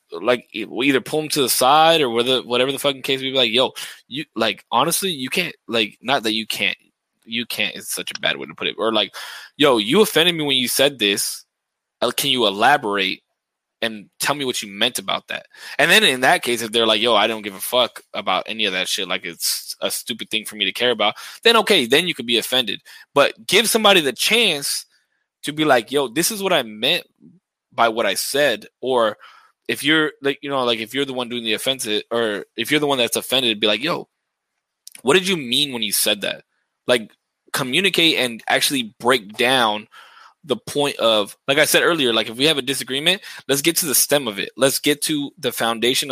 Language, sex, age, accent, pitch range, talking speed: English, male, 20-39, American, 115-150 Hz, 230 wpm